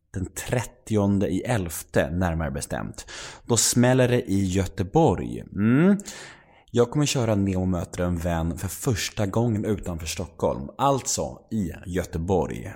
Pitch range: 85-110 Hz